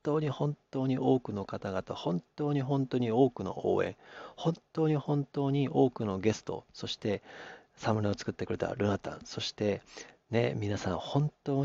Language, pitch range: Japanese, 115-155 Hz